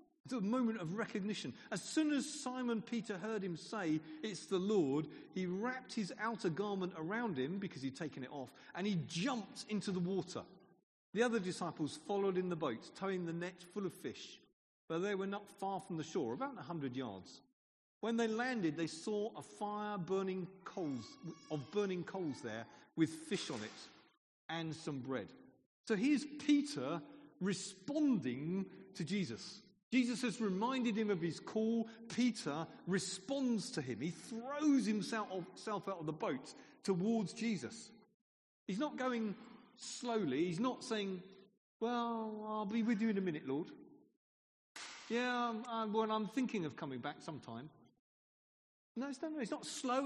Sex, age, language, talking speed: male, 40-59, English, 160 wpm